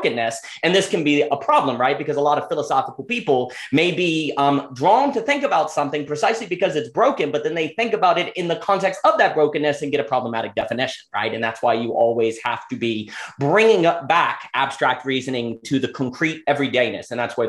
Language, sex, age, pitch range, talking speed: English, male, 30-49, 130-190 Hz, 220 wpm